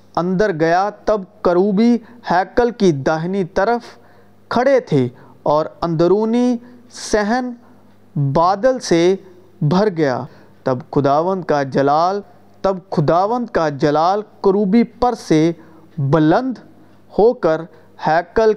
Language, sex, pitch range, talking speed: Urdu, male, 150-210 Hz, 105 wpm